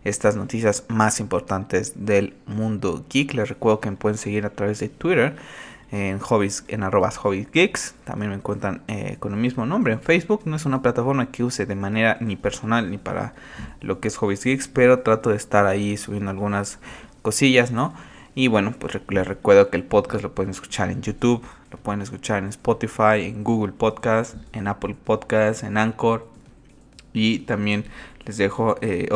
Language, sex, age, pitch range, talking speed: Spanish, male, 20-39, 105-125 Hz, 185 wpm